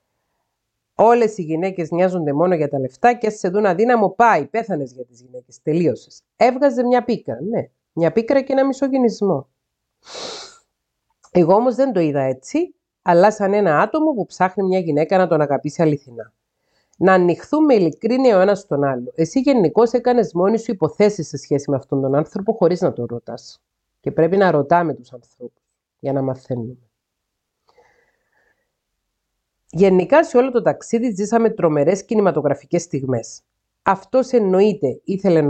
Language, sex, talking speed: Greek, female, 155 wpm